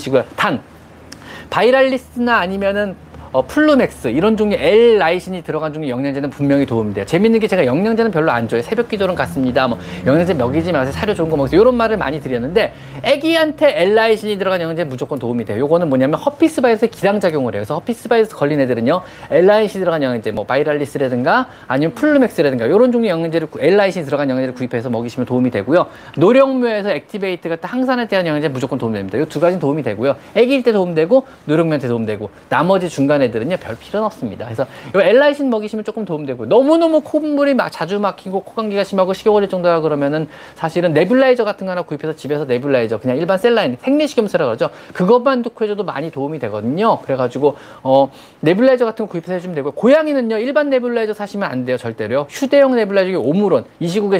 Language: Korean